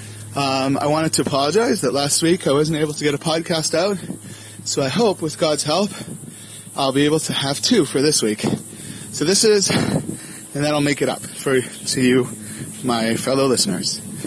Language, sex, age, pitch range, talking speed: English, male, 20-39, 110-165 Hz, 190 wpm